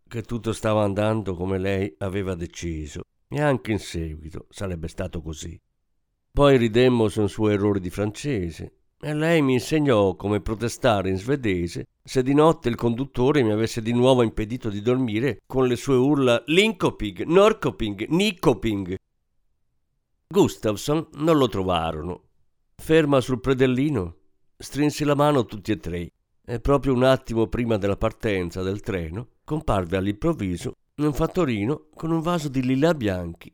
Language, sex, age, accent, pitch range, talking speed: Italian, male, 50-69, native, 95-140 Hz, 145 wpm